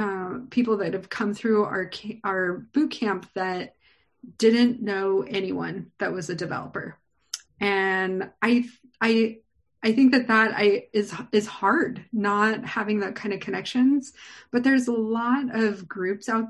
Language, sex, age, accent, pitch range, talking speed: English, female, 30-49, American, 190-230 Hz, 155 wpm